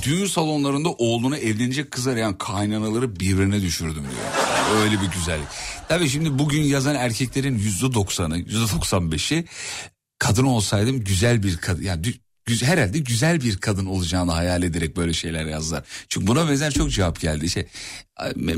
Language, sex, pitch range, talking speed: Turkish, male, 85-120 Hz, 155 wpm